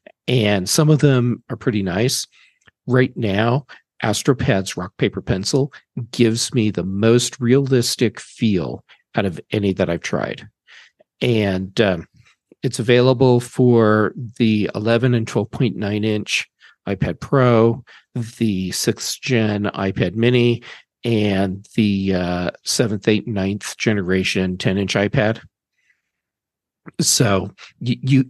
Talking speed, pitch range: 110 wpm, 100-125 Hz